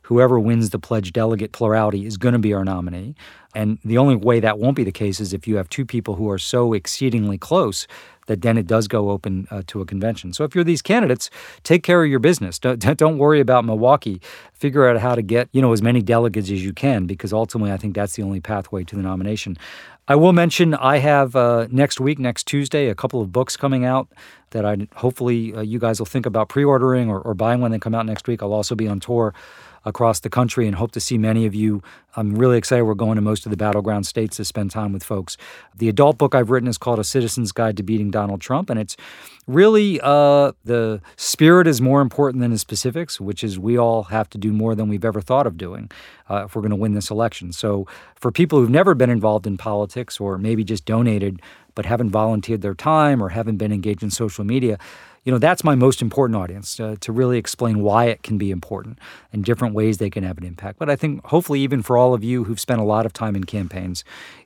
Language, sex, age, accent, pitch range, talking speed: English, male, 40-59, American, 105-125 Hz, 245 wpm